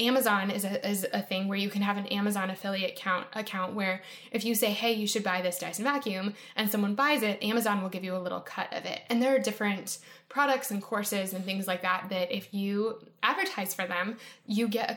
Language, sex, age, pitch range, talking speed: English, female, 10-29, 195-245 Hz, 235 wpm